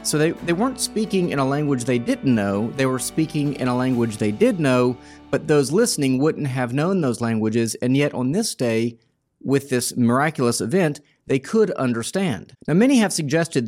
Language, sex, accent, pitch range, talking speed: English, male, American, 120-165 Hz, 195 wpm